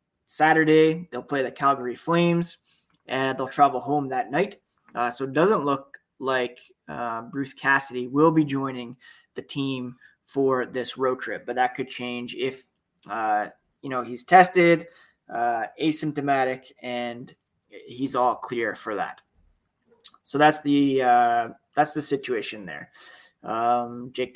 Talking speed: 145 wpm